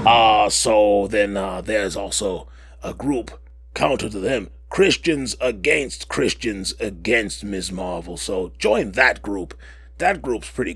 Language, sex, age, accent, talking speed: English, male, 30-49, American, 135 wpm